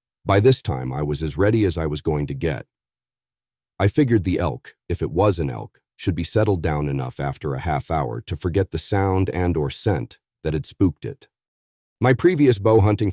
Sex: male